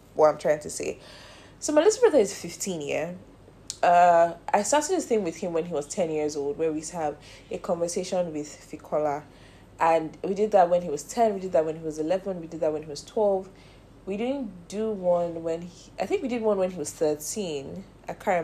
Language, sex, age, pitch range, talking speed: English, female, 10-29, 155-205 Hz, 230 wpm